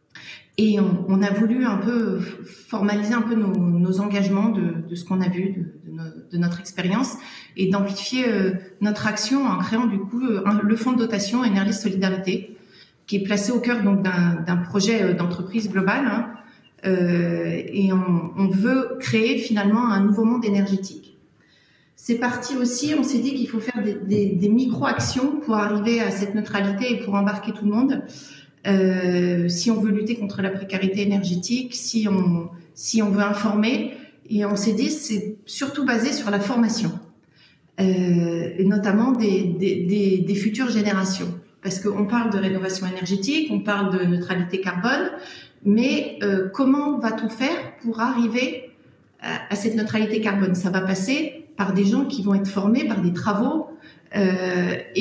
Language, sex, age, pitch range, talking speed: French, female, 30-49, 190-235 Hz, 170 wpm